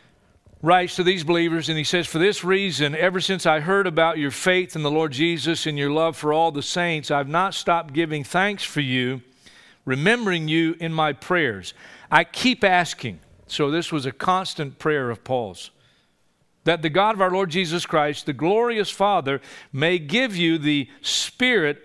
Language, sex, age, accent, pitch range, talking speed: English, male, 50-69, American, 145-180 Hz, 185 wpm